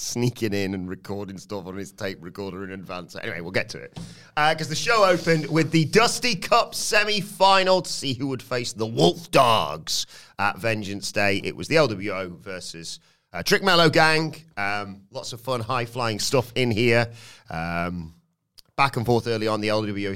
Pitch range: 100-135 Hz